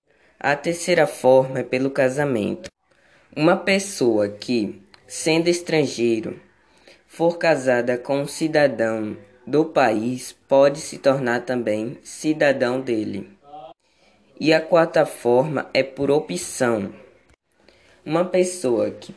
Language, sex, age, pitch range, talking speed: Portuguese, female, 10-29, 125-150 Hz, 105 wpm